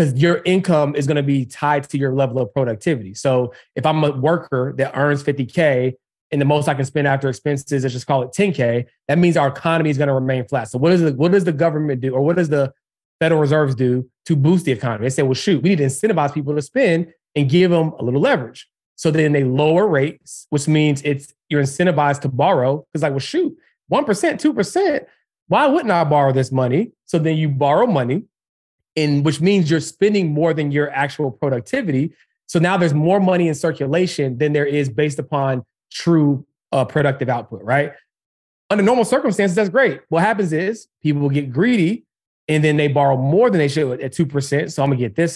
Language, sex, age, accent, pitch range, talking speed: English, male, 30-49, American, 135-170 Hz, 215 wpm